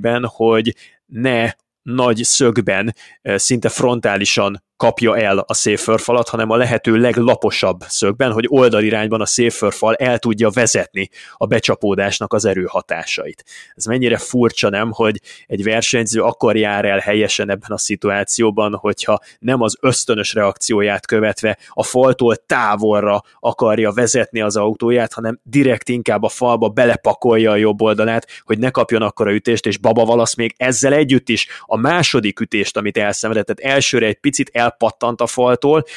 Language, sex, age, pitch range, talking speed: Hungarian, male, 20-39, 105-120 Hz, 145 wpm